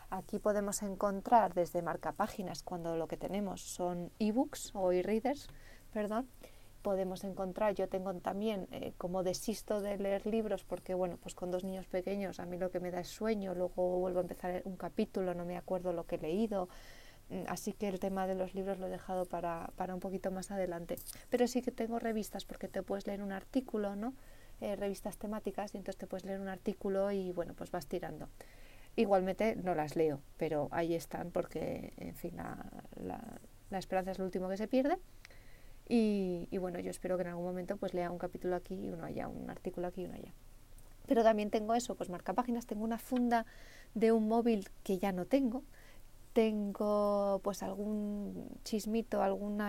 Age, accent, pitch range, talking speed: 30-49, Spanish, 180-210 Hz, 195 wpm